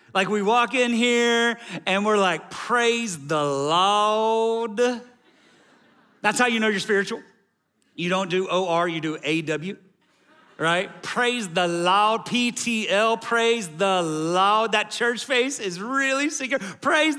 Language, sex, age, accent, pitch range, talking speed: English, male, 40-59, American, 160-235 Hz, 135 wpm